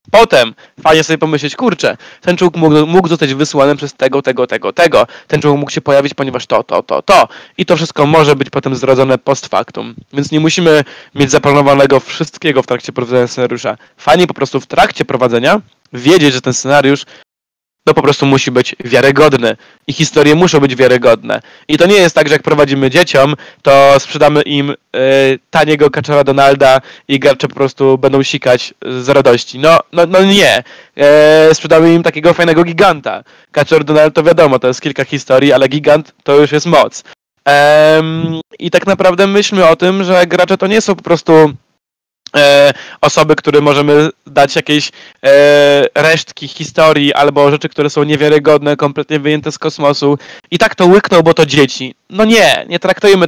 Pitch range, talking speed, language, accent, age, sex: 140-165 Hz, 170 wpm, Polish, native, 20-39, male